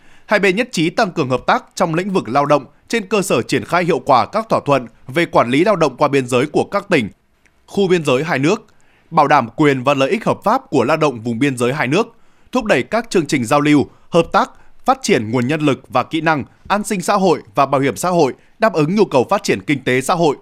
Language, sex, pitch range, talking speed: Vietnamese, male, 140-205 Hz, 265 wpm